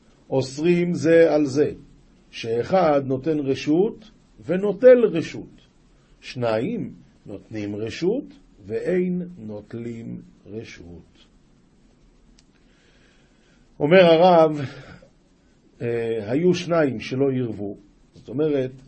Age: 50-69